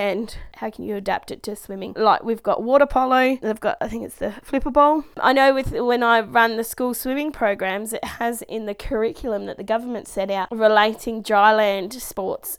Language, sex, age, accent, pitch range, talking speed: English, female, 20-39, Australian, 205-245 Hz, 215 wpm